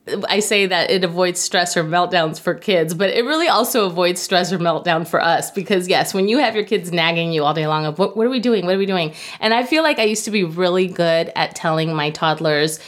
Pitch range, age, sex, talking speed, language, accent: 170-220 Hz, 30-49, female, 260 wpm, English, American